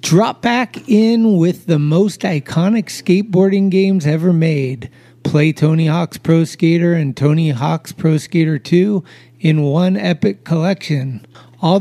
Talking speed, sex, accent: 135 wpm, male, American